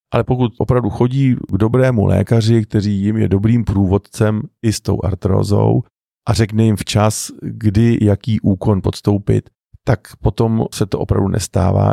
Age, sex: 40-59, male